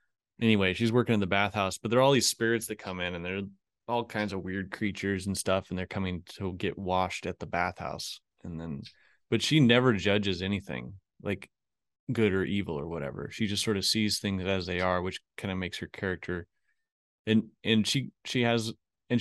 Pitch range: 95-115 Hz